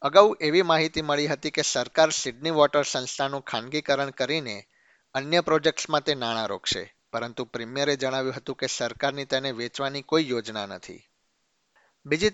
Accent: native